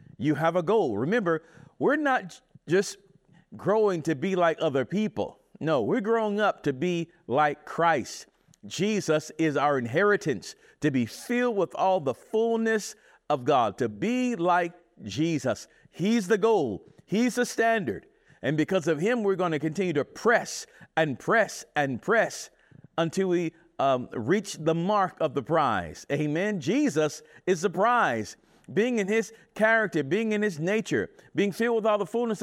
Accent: American